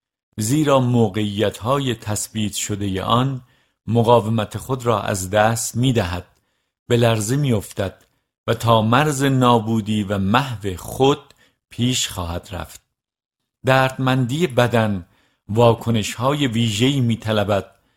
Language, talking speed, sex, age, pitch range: Persian, 105 wpm, male, 50-69, 100-125 Hz